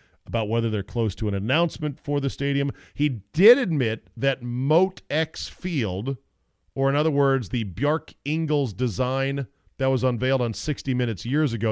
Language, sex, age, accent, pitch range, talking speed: English, male, 40-59, American, 95-140 Hz, 170 wpm